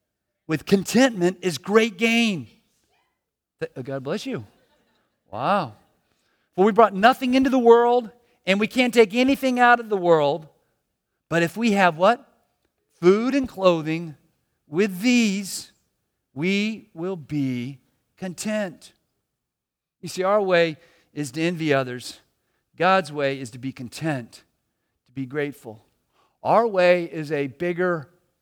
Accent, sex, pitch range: American, male, 140-210 Hz